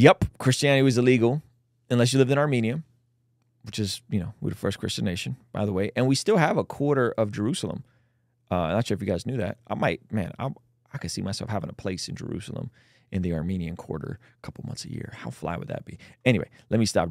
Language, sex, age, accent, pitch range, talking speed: English, male, 30-49, American, 105-130 Hz, 240 wpm